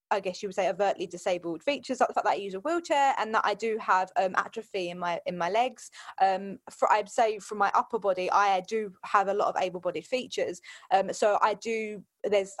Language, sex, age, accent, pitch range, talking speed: English, female, 20-39, British, 195-245 Hz, 240 wpm